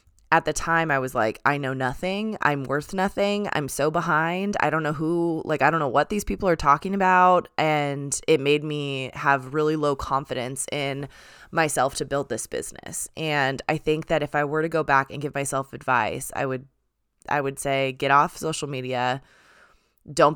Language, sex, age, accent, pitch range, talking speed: English, female, 20-39, American, 135-160 Hz, 200 wpm